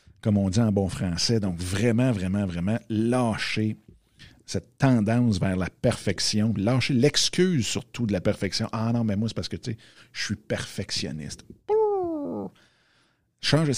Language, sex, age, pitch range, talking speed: French, male, 50-69, 100-130 Hz, 155 wpm